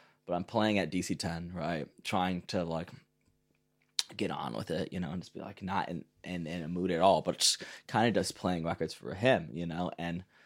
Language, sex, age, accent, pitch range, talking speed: English, male, 20-39, American, 85-95 Hz, 225 wpm